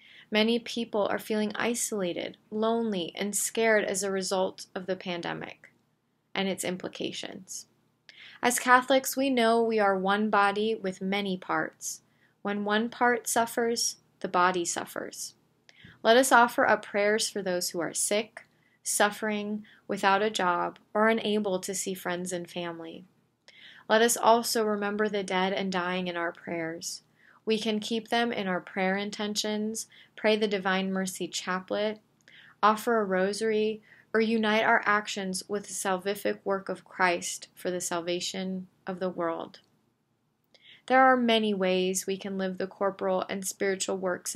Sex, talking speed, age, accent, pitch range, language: female, 150 wpm, 20-39, American, 185-220 Hz, English